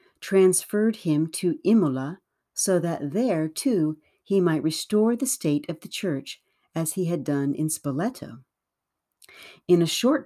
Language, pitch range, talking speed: English, 145-195 Hz, 145 wpm